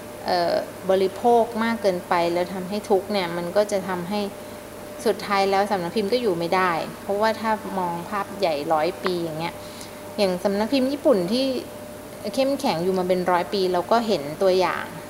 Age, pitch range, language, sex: 20-39, 180-215 Hz, Thai, female